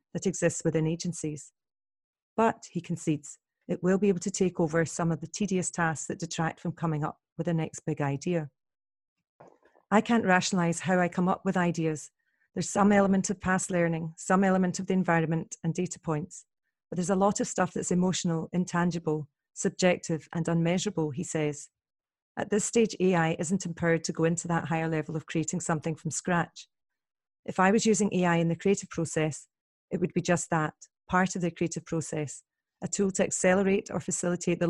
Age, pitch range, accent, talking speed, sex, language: 40-59, 165-190 Hz, British, 190 wpm, female, English